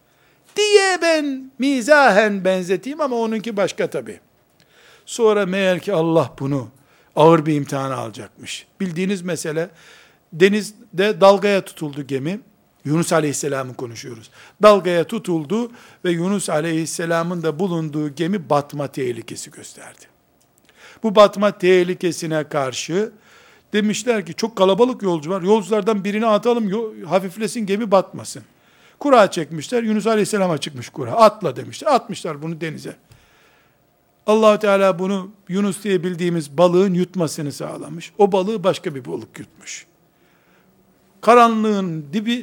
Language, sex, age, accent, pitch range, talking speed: Turkish, male, 60-79, native, 160-210 Hz, 115 wpm